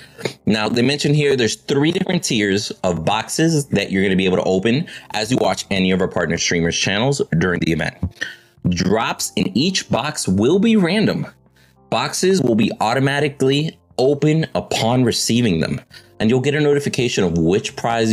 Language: English